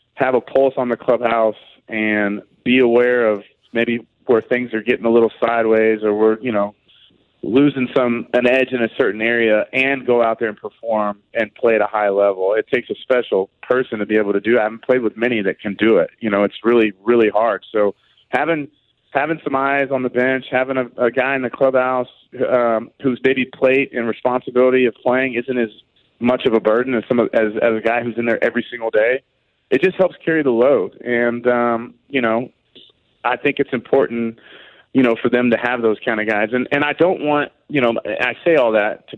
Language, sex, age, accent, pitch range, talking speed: English, male, 30-49, American, 110-130 Hz, 225 wpm